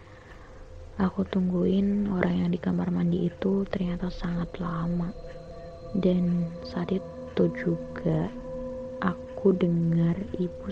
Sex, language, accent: female, Indonesian, native